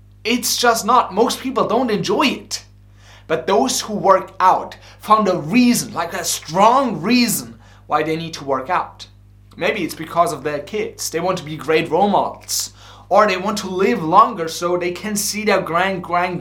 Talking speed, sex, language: 190 wpm, male, English